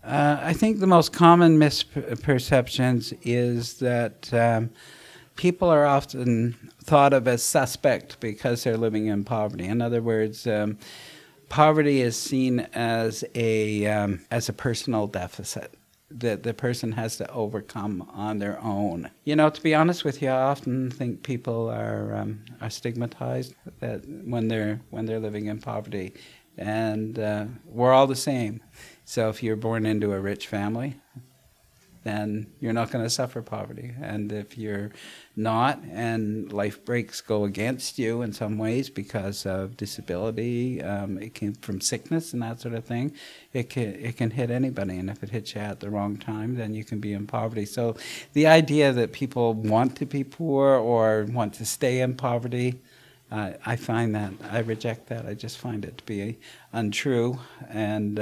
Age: 50-69